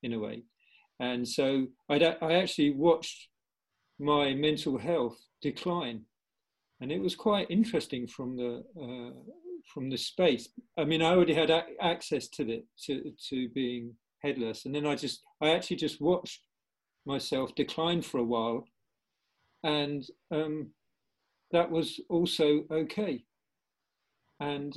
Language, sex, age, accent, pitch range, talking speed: English, male, 50-69, British, 135-175 Hz, 140 wpm